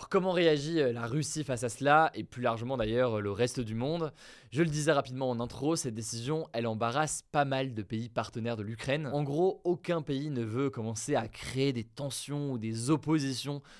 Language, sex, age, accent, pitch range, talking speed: French, male, 20-39, French, 115-145 Hz, 200 wpm